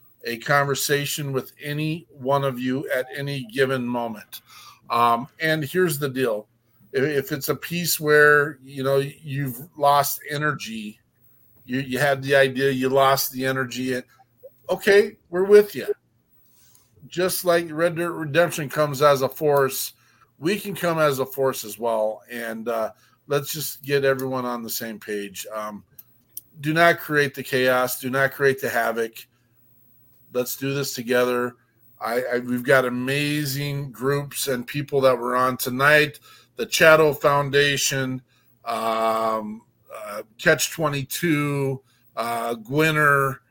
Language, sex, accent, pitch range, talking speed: English, male, American, 120-150 Hz, 140 wpm